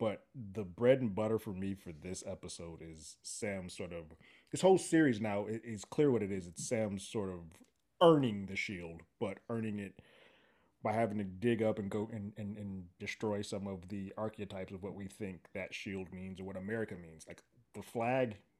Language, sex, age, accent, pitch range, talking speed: English, male, 20-39, American, 85-110 Hz, 205 wpm